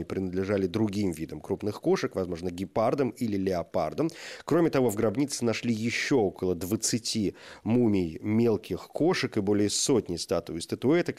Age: 30-49